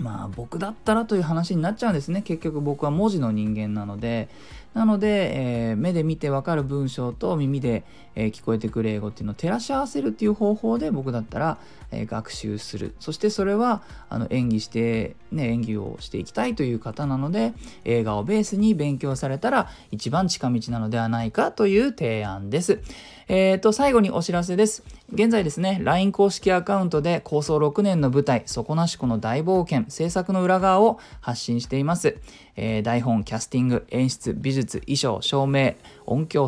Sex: male